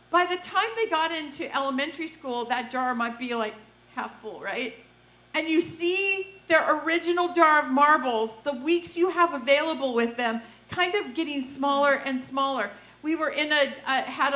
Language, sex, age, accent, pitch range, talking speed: English, female, 40-59, American, 250-320 Hz, 180 wpm